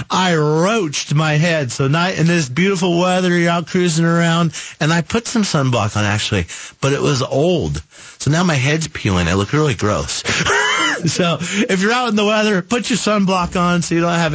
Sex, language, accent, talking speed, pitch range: male, English, American, 205 wpm, 130-175 Hz